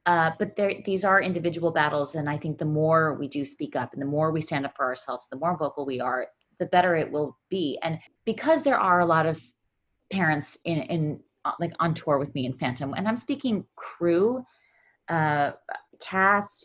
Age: 30-49